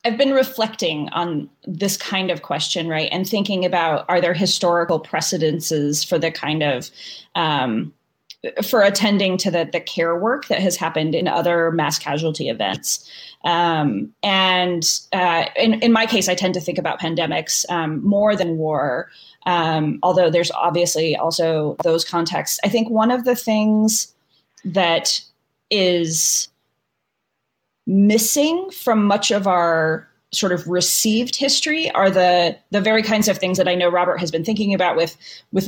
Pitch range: 165-215 Hz